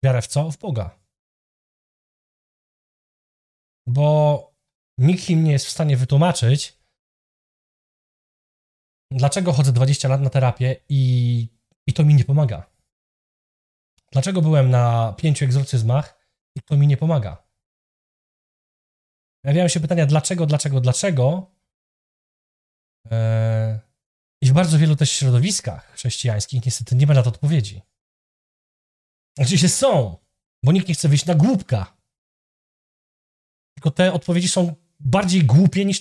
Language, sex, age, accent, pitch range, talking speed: Polish, male, 20-39, native, 125-170 Hz, 120 wpm